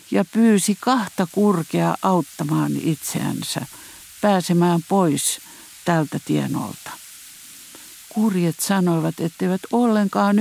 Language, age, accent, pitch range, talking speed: Finnish, 50-69, native, 165-205 Hz, 80 wpm